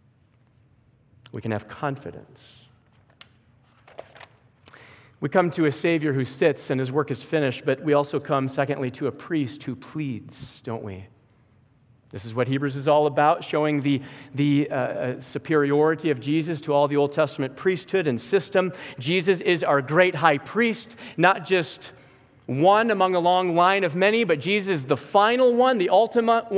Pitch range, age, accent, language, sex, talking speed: 135-200 Hz, 40-59, American, English, male, 165 wpm